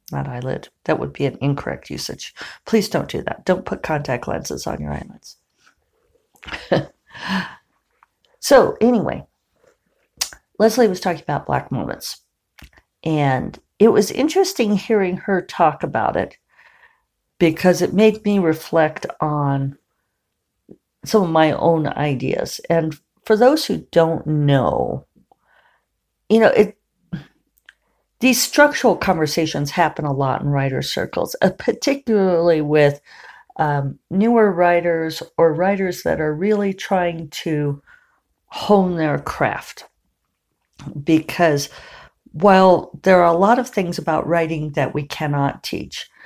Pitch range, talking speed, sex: 150-215 Hz, 125 wpm, female